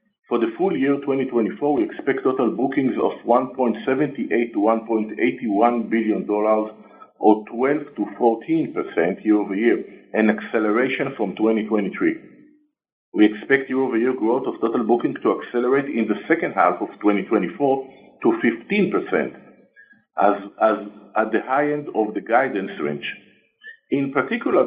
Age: 50-69